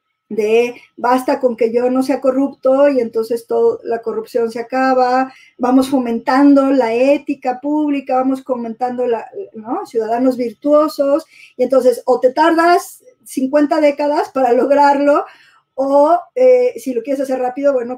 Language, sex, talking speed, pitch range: English, female, 145 wpm, 245-285 Hz